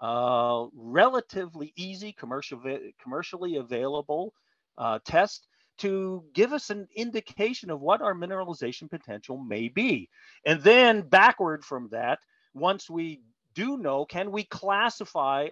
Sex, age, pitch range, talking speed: male, 50-69, 135-200 Hz, 120 wpm